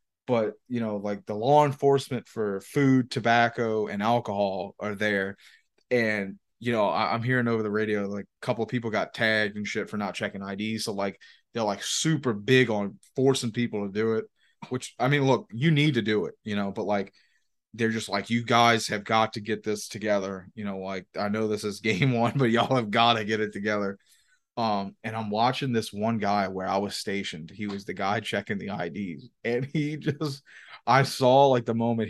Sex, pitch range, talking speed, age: male, 100-115 Hz, 215 wpm, 20-39